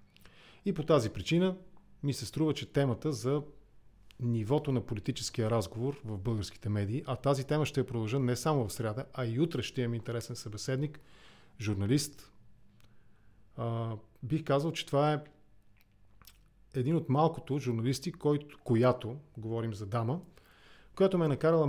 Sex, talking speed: male, 145 wpm